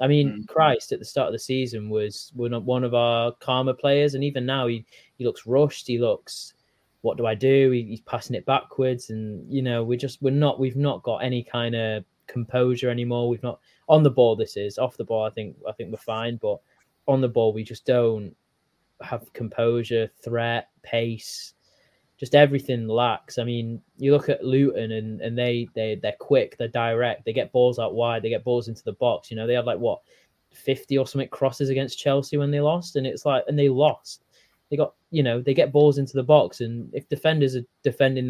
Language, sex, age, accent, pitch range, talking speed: English, male, 20-39, British, 115-135 Hz, 220 wpm